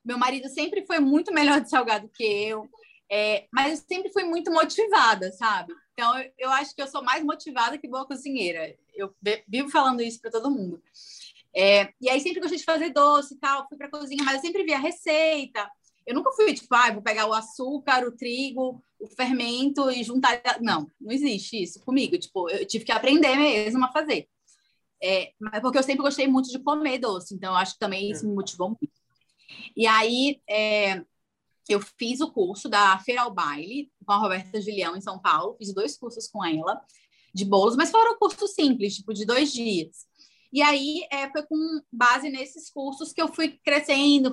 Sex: female